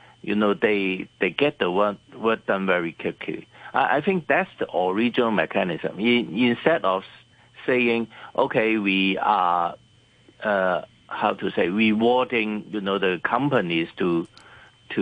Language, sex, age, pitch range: English, male, 50-69, 95-120 Hz